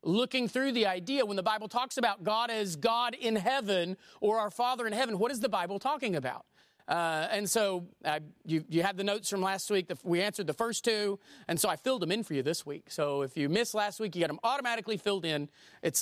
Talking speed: 245 wpm